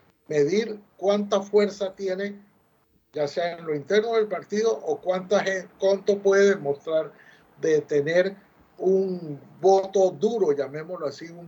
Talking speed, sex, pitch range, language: 120 wpm, male, 145-195 Hz, Spanish